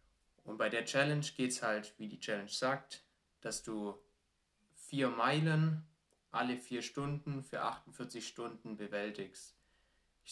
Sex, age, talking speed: male, 20-39, 135 wpm